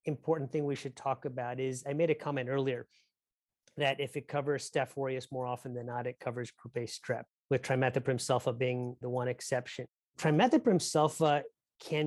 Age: 30-49